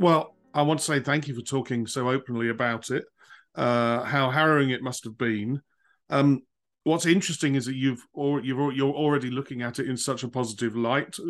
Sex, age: male, 40-59